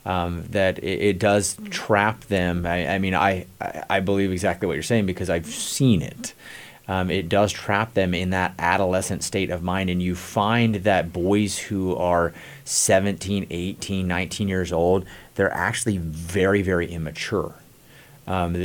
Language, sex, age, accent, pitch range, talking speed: English, male, 30-49, American, 90-105 Hz, 160 wpm